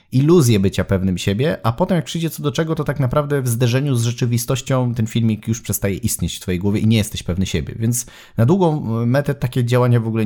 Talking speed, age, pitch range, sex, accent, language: 230 wpm, 30-49, 105-130 Hz, male, native, Polish